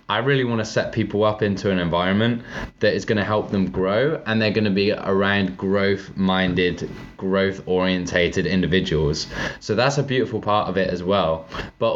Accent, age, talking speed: British, 20-39, 180 wpm